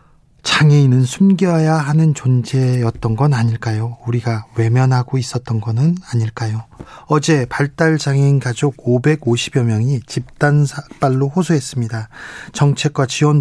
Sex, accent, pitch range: male, native, 120-155 Hz